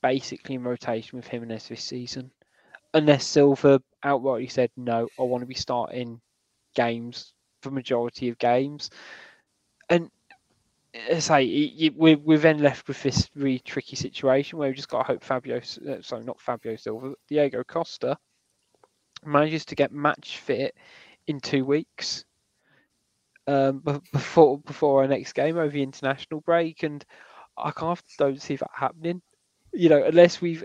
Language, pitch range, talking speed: English, 130-165 Hz, 150 wpm